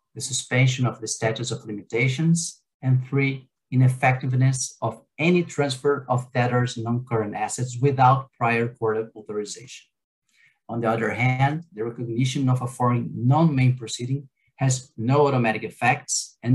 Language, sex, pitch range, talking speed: English, male, 115-135 Hz, 135 wpm